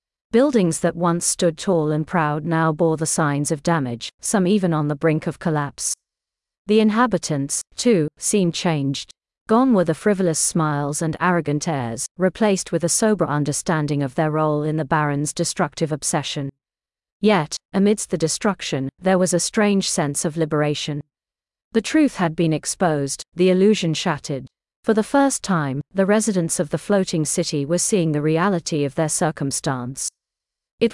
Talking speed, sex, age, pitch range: 160 wpm, female, 40-59, 150-190 Hz